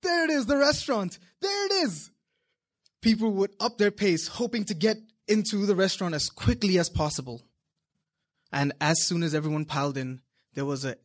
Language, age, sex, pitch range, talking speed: English, 20-39, male, 140-210 Hz, 180 wpm